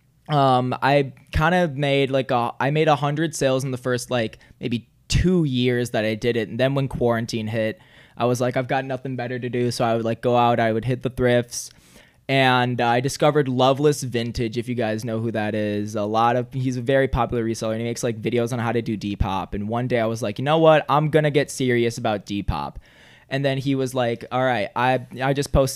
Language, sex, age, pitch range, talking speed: English, male, 20-39, 115-130 Hz, 240 wpm